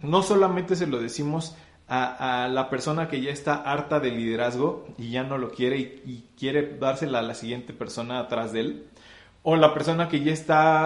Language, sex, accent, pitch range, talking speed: Spanish, male, Mexican, 125-155 Hz, 205 wpm